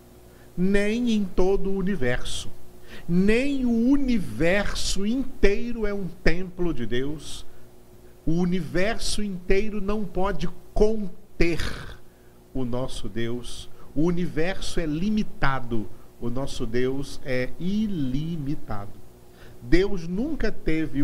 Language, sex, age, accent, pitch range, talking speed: Portuguese, male, 50-69, Brazilian, 120-185 Hz, 100 wpm